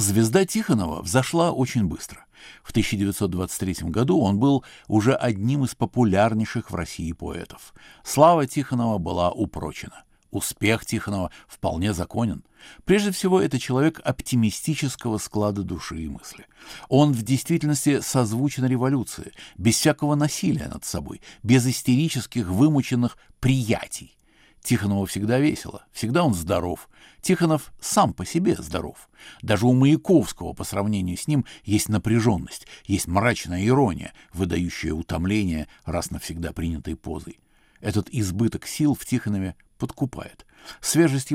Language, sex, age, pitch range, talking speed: Russian, male, 60-79, 95-135 Hz, 120 wpm